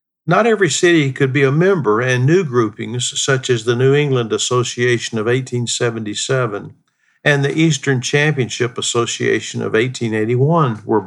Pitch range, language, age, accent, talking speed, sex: 120-145 Hz, English, 50-69, American, 140 wpm, male